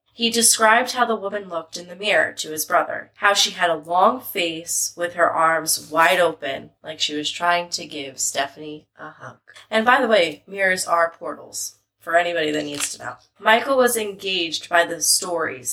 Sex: female